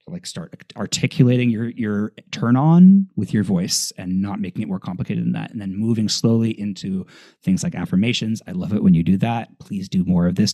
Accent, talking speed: American, 215 wpm